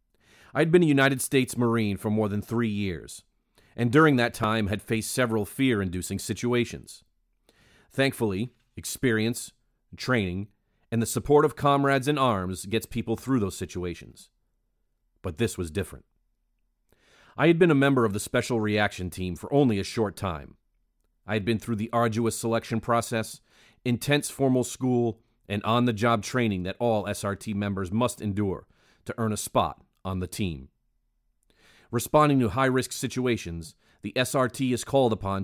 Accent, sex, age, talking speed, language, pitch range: American, male, 40-59, 150 wpm, English, 100-125 Hz